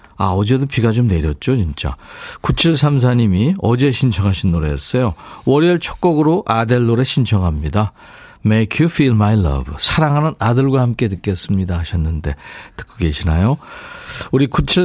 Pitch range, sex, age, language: 105-155 Hz, male, 40-59, Korean